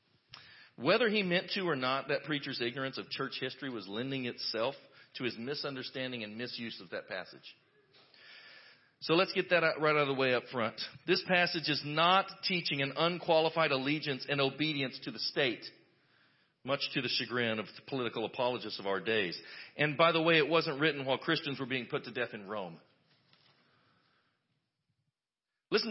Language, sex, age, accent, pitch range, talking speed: English, male, 40-59, American, 135-175 Hz, 175 wpm